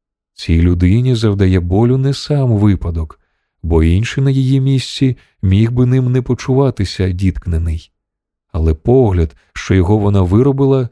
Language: Ukrainian